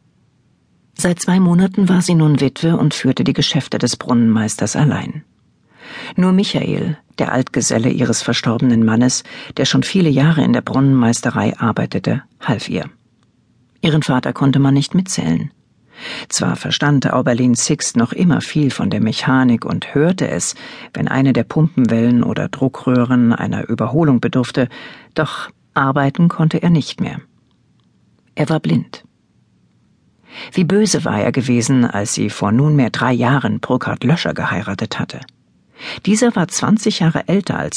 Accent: German